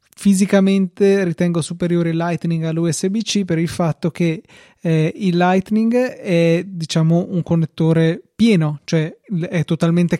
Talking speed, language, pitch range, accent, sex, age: 125 wpm, Italian, 155-180 Hz, native, male, 20-39